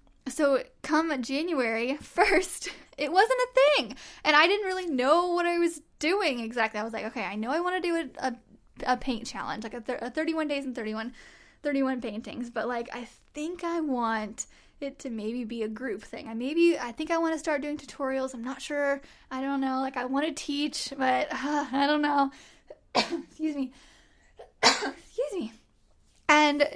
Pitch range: 250-310 Hz